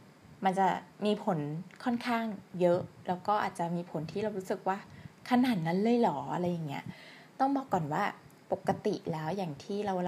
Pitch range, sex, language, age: 165-205 Hz, female, Thai, 20-39